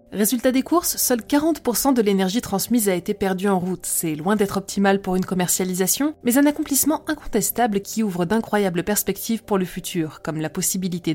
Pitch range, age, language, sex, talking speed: 180-235 Hz, 20-39, French, female, 185 wpm